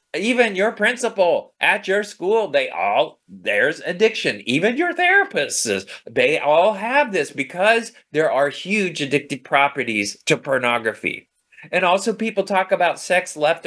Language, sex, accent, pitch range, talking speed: English, male, American, 135-195 Hz, 140 wpm